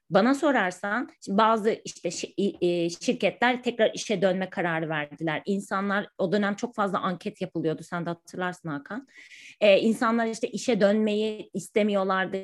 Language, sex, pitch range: Turkish, female, 195-250 Hz